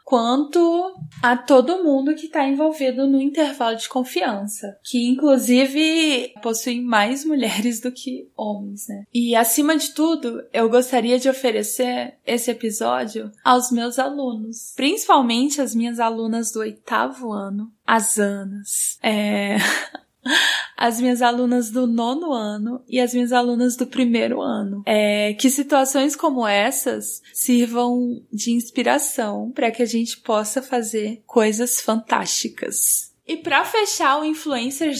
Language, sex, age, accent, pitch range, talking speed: Portuguese, female, 10-29, Brazilian, 225-280 Hz, 130 wpm